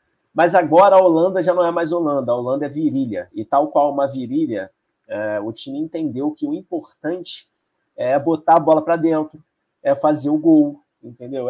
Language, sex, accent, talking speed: Portuguese, male, Brazilian, 190 wpm